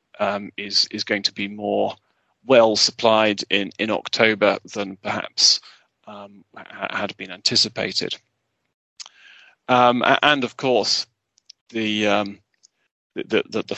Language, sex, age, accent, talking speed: English, male, 30-49, British, 115 wpm